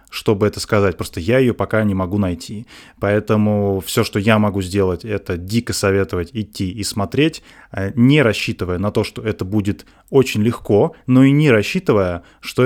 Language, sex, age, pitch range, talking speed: Russian, male, 20-39, 100-120 Hz, 170 wpm